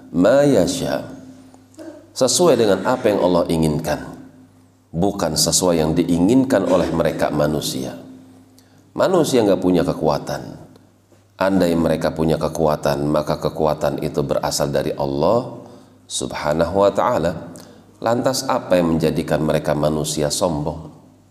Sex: male